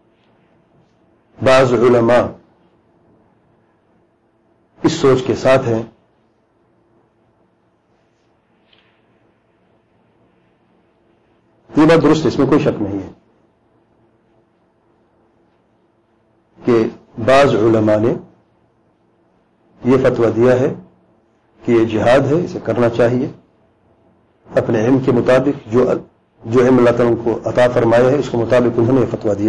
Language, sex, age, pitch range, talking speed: English, male, 50-69, 110-140 Hz, 85 wpm